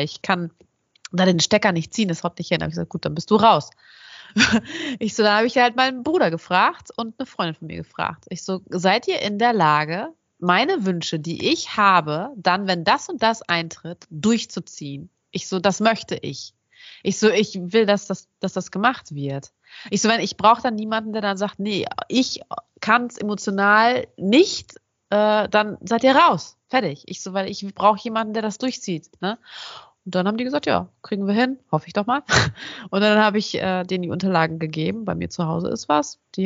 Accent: German